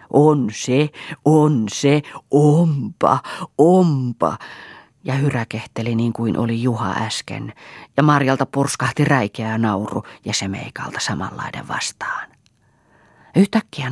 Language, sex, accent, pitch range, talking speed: Finnish, female, native, 120-150 Hz, 110 wpm